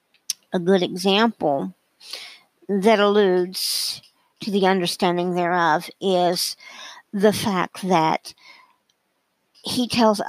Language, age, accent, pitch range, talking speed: English, 50-69, American, 175-210 Hz, 85 wpm